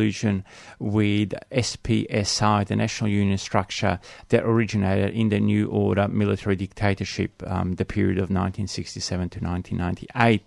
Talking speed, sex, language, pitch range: 110 wpm, male, English, 100-115 Hz